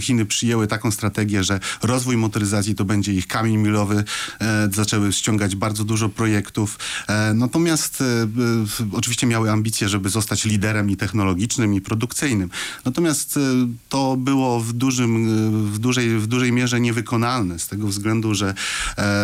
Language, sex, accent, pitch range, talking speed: Polish, male, native, 105-115 Hz, 125 wpm